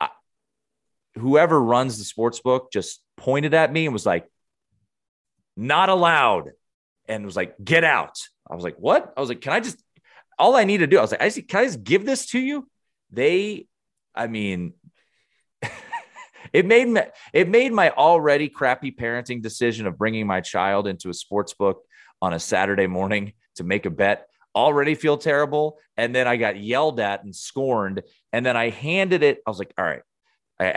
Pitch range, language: 100-155 Hz, English